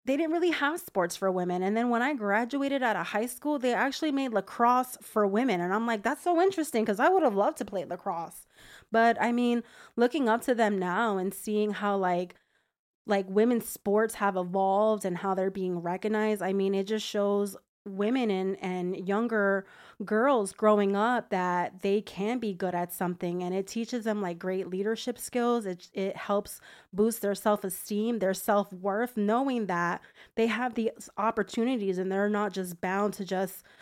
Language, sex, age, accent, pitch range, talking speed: English, female, 20-39, American, 195-225 Hz, 190 wpm